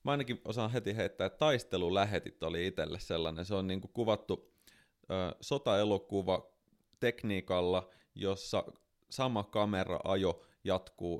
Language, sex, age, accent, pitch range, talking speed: Finnish, male, 30-49, native, 90-110 Hz, 115 wpm